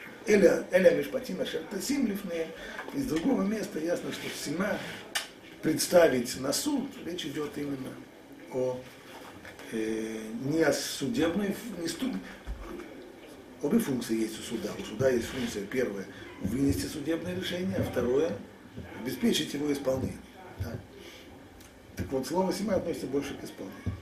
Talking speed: 115 wpm